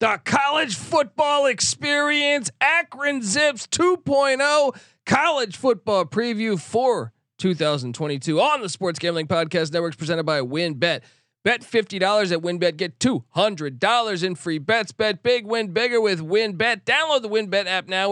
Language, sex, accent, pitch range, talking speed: English, male, American, 160-230 Hz, 135 wpm